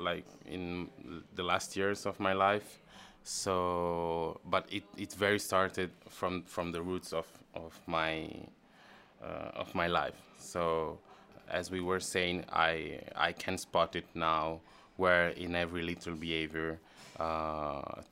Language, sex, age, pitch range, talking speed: Italian, male, 20-39, 80-90 Hz, 140 wpm